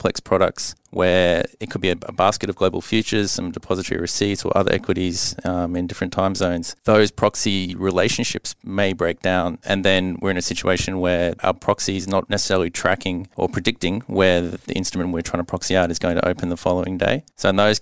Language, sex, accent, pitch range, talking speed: English, male, Australian, 90-100 Hz, 210 wpm